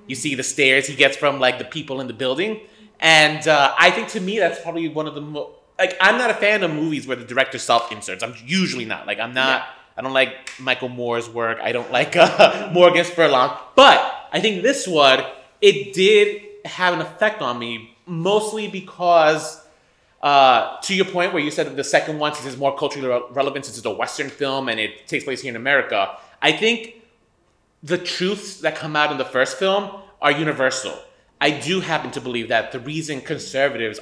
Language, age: English, 30-49